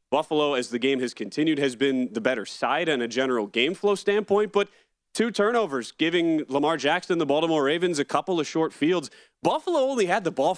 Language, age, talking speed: English, 30-49, 205 wpm